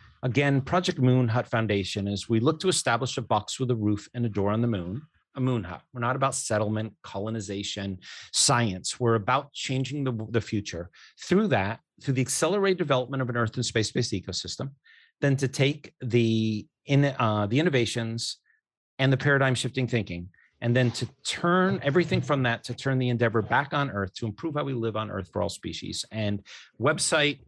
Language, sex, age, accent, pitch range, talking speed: English, male, 30-49, American, 110-140 Hz, 190 wpm